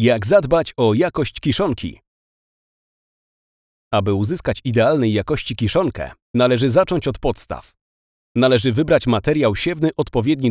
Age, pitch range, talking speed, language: 40-59, 115-150 Hz, 110 wpm, Polish